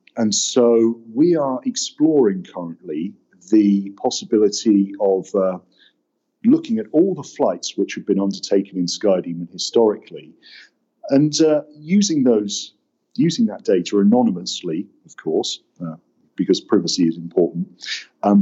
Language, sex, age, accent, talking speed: German, male, 40-59, British, 125 wpm